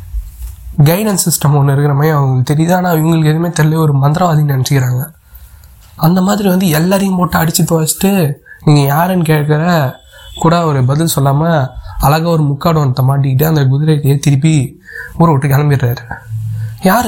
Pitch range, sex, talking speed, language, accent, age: 135-170 Hz, male, 135 wpm, Tamil, native, 20-39